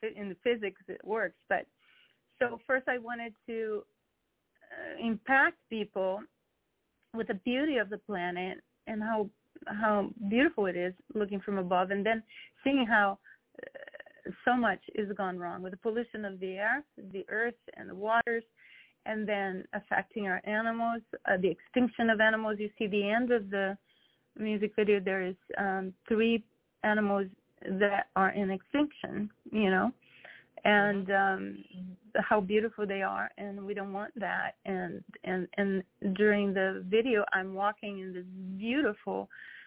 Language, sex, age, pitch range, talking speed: English, female, 30-49, 190-225 Hz, 155 wpm